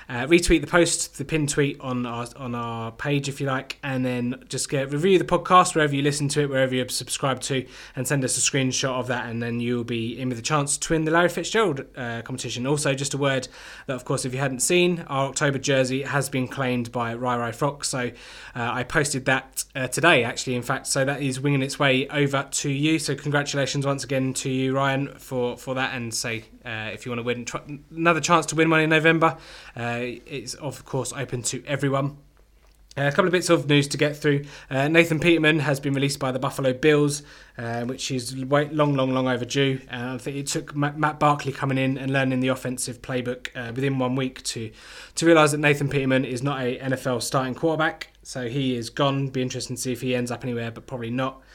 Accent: British